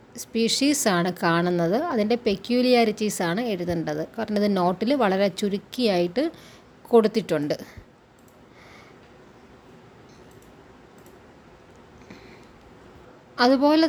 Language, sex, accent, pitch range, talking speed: Malayalam, female, native, 180-230 Hz, 55 wpm